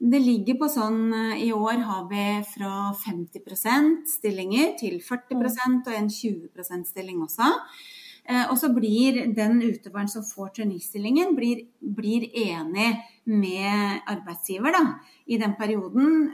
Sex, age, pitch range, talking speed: female, 30-49, 200-250 Hz, 130 wpm